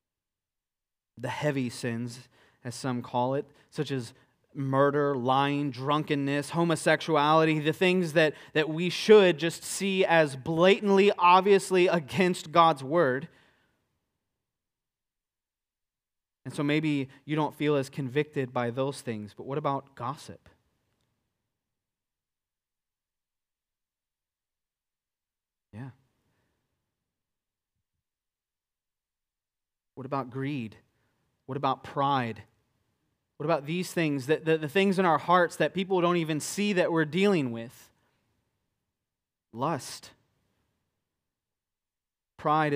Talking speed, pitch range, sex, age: 100 wpm, 120-155 Hz, male, 30-49